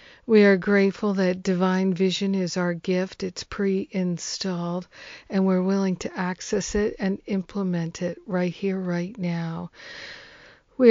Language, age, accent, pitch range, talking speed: English, 50-69, American, 175-195 Hz, 140 wpm